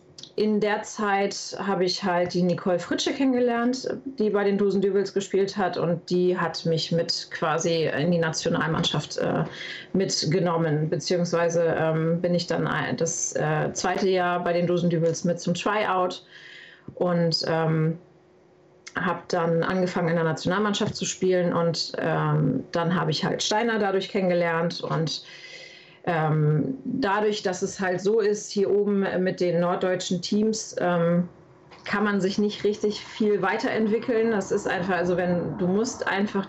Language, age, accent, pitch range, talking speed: German, 30-49, German, 170-195 Hz, 150 wpm